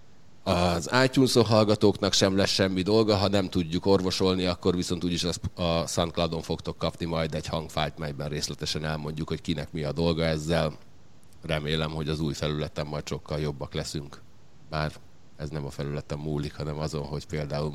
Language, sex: Hungarian, male